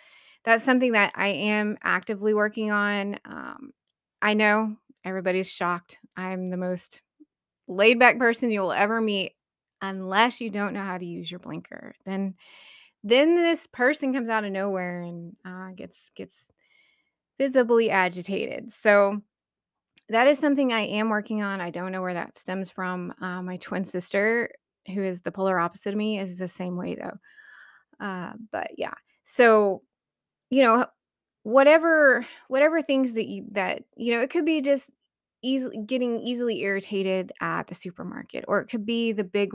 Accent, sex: American, female